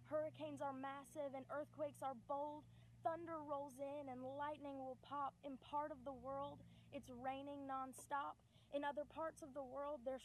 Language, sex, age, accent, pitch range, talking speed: English, female, 20-39, American, 235-275 Hz, 170 wpm